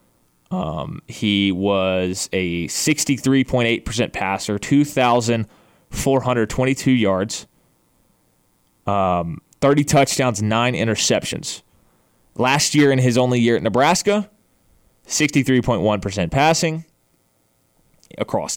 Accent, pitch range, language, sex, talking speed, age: American, 115-150 Hz, English, male, 80 wpm, 20-39